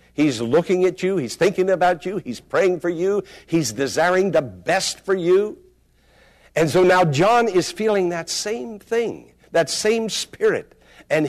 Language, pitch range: English, 150-215 Hz